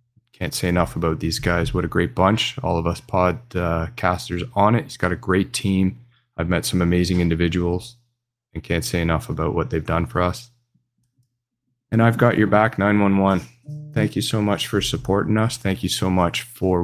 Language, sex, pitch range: English, male, 90-120 Hz